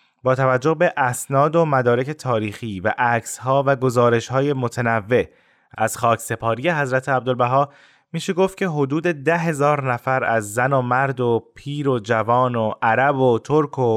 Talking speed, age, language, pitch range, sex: 150 wpm, 20-39, Persian, 120-145 Hz, male